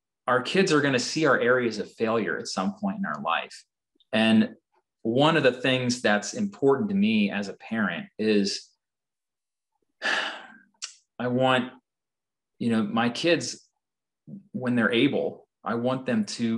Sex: male